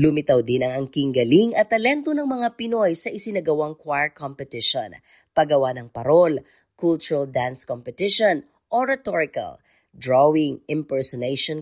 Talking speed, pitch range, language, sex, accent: 120 wpm, 140-200 Hz, Filipino, female, native